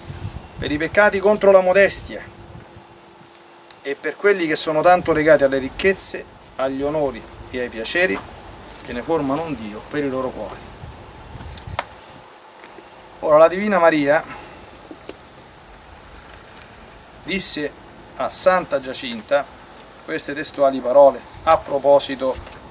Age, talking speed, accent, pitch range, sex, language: 40-59, 110 wpm, native, 140-175 Hz, male, Italian